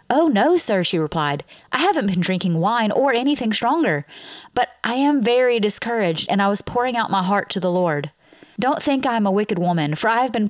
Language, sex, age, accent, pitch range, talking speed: English, female, 30-49, American, 180-230 Hz, 210 wpm